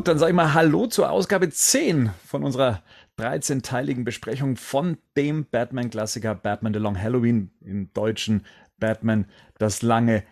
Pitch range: 110-140 Hz